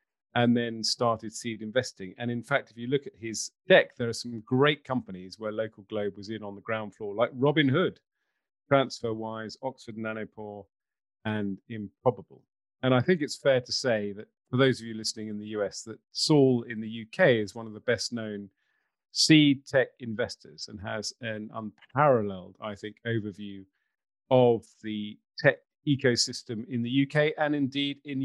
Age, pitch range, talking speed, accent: 40-59, 110-130 Hz, 175 wpm, British